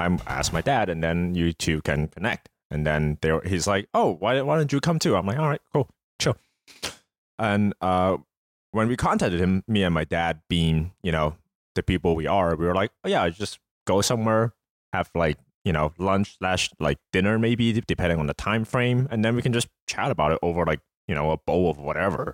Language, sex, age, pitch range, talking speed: English, male, 20-39, 80-100 Hz, 220 wpm